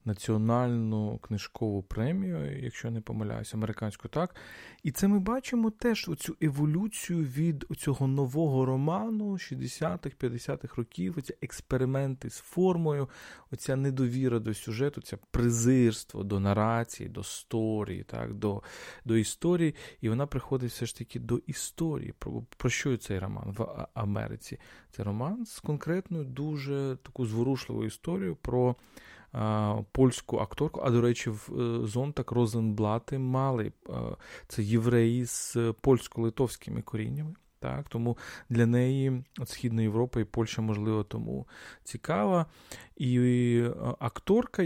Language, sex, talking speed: Ukrainian, male, 115 wpm